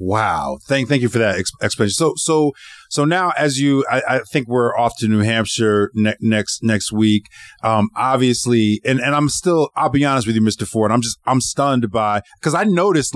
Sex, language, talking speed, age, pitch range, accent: male, English, 210 wpm, 30-49, 110-135 Hz, American